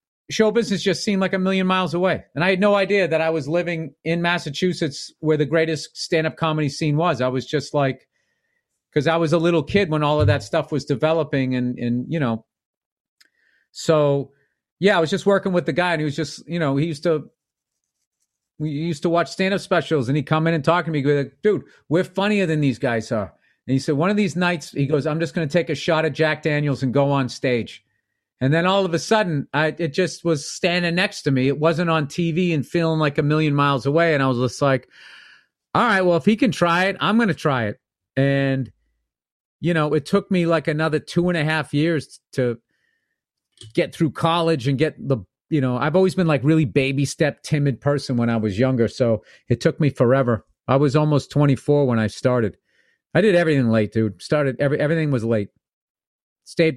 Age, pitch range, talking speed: 40-59, 135-175 Hz, 225 wpm